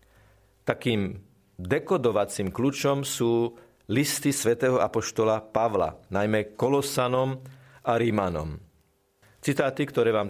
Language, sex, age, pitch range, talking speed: Slovak, male, 50-69, 105-140 Hz, 85 wpm